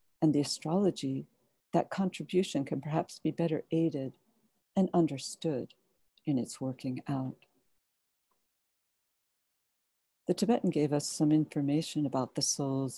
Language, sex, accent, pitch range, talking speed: English, female, American, 135-170 Hz, 115 wpm